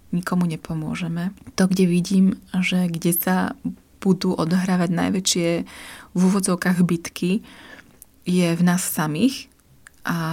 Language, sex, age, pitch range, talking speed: Slovak, female, 20-39, 170-185 Hz, 110 wpm